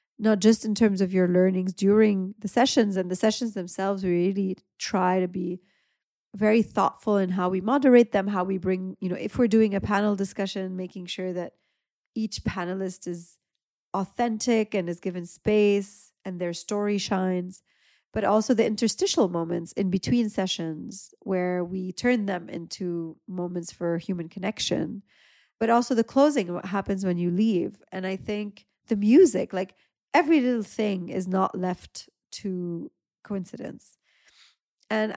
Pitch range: 180-215 Hz